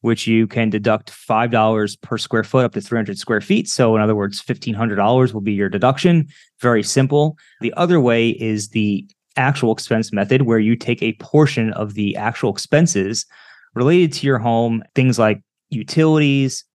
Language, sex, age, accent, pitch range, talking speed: English, male, 20-39, American, 110-135 Hz, 170 wpm